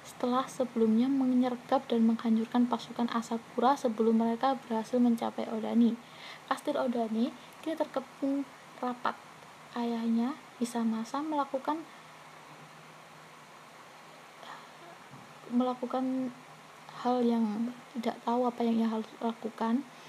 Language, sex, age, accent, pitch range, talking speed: Indonesian, female, 20-39, native, 230-260 Hz, 85 wpm